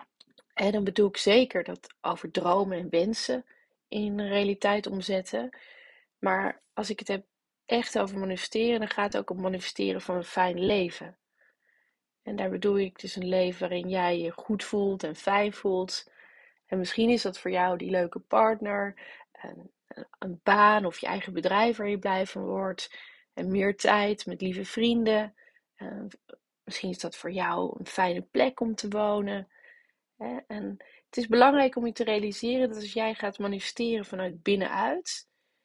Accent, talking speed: Dutch, 165 wpm